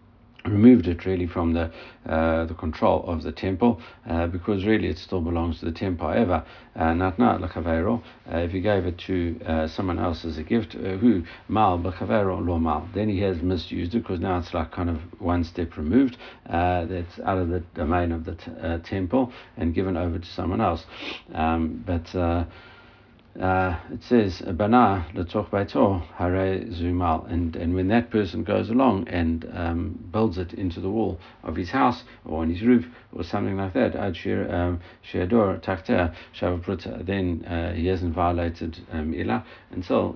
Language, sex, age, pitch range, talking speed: English, male, 60-79, 85-100 Hz, 155 wpm